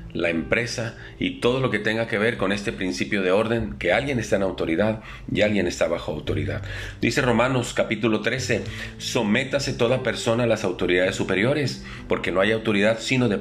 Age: 40-59